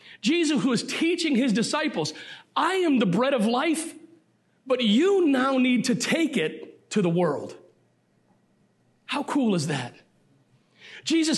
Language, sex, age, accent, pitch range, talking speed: English, male, 40-59, American, 190-270 Hz, 140 wpm